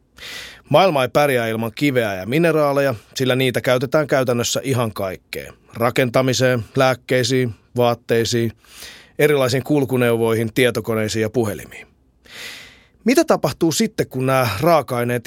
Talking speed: 105 wpm